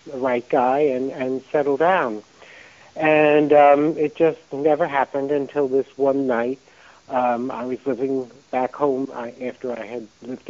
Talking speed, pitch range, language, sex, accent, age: 155 wpm, 120-140 Hz, English, male, American, 60-79